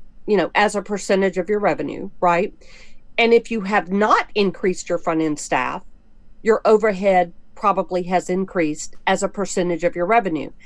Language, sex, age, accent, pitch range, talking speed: English, female, 50-69, American, 185-235 Hz, 170 wpm